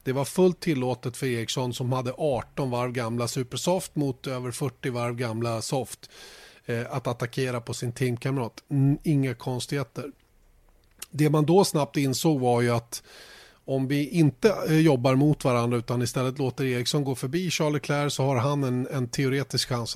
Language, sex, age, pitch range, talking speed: Swedish, male, 30-49, 120-150 Hz, 160 wpm